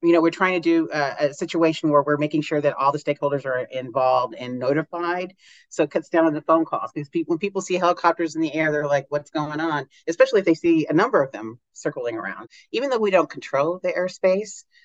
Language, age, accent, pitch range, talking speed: English, 40-59, American, 145-185 Hz, 245 wpm